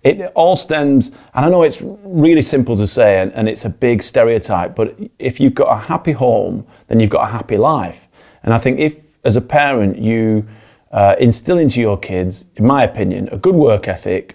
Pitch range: 105-130 Hz